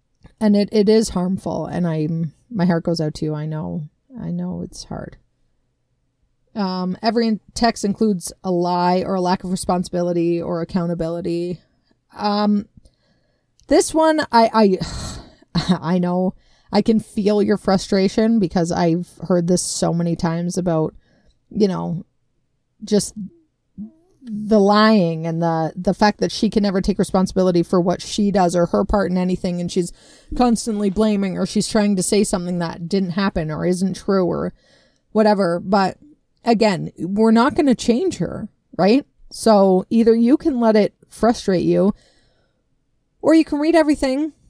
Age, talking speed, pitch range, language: 30-49, 155 wpm, 175-215 Hz, English